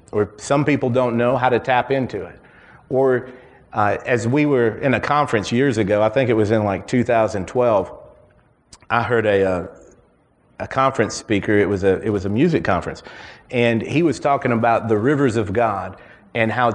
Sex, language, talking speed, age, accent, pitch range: male, English, 190 wpm, 40-59, American, 110-135 Hz